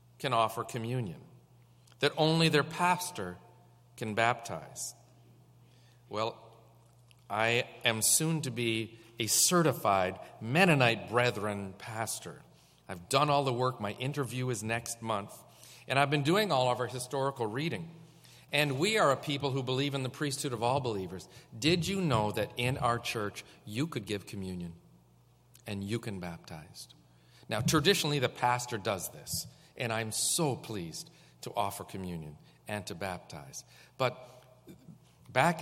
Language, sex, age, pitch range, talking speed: English, male, 40-59, 115-150 Hz, 145 wpm